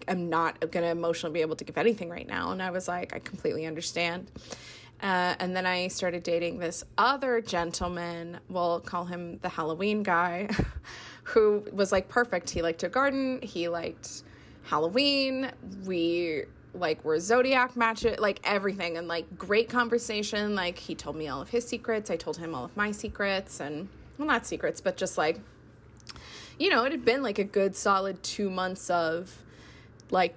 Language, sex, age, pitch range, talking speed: English, female, 20-39, 170-215 Hz, 180 wpm